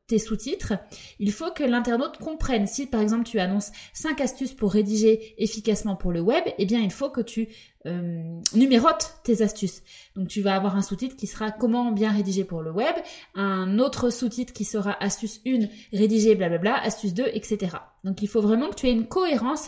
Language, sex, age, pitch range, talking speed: French, female, 20-39, 210-275 Hz, 195 wpm